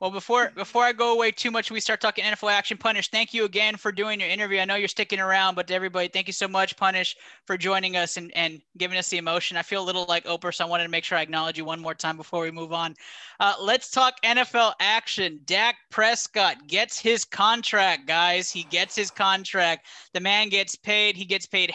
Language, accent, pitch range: English, American, 175-215 Hz